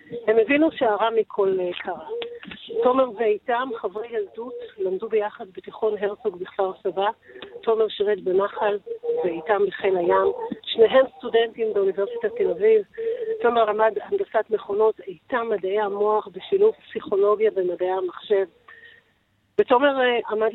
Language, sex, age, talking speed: Hebrew, female, 40-59, 115 wpm